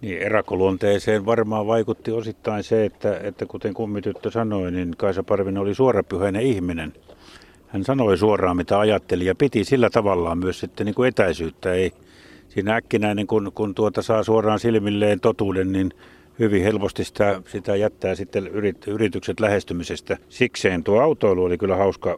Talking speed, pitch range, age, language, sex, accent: 150 wpm, 90-105 Hz, 50-69, Finnish, male, native